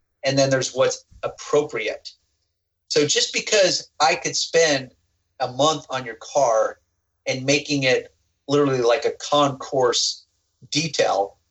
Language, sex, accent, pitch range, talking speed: English, male, American, 115-145 Hz, 125 wpm